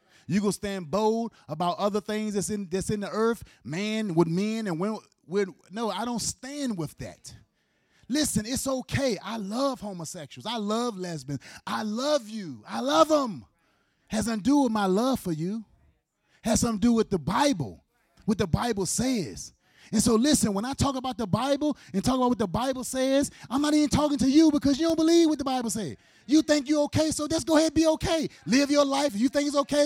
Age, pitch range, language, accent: 30-49, 180-275 Hz, English, American